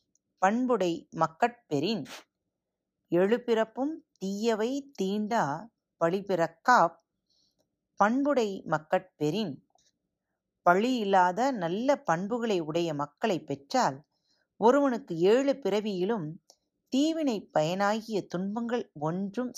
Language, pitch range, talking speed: Tamil, 160-240 Hz, 65 wpm